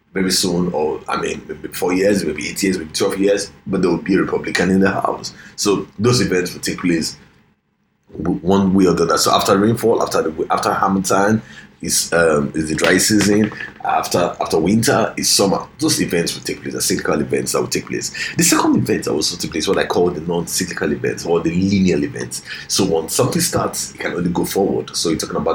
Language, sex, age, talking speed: English, male, 30-49, 220 wpm